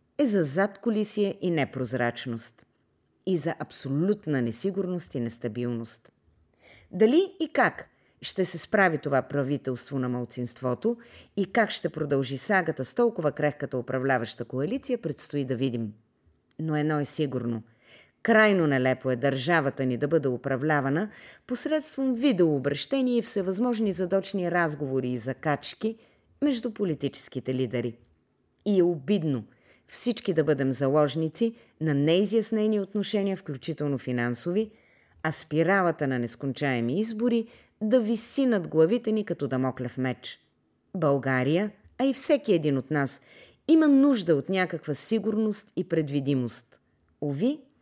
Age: 40-59